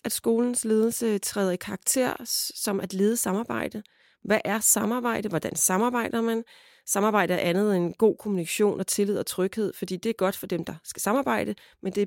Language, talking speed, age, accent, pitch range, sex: Danish, 185 wpm, 30-49, native, 185-230 Hz, female